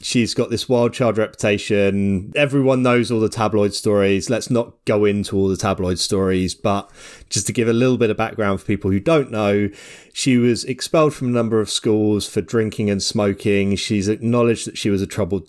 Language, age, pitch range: English, 30-49, 100-115 Hz